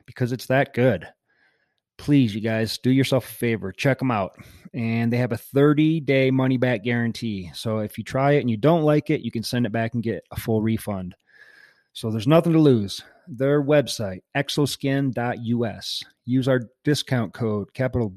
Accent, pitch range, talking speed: American, 115-145 Hz, 180 wpm